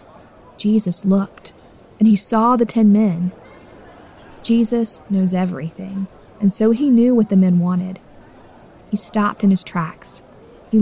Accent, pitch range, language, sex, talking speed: American, 180-230 Hz, English, female, 140 wpm